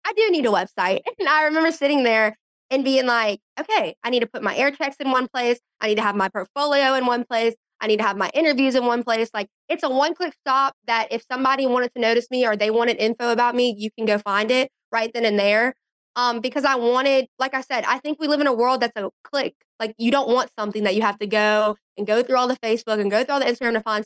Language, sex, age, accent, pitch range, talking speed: English, female, 20-39, American, 220-270 Hz, 275 wpm